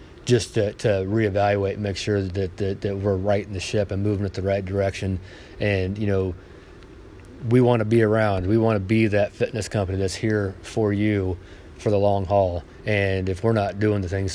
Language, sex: English, male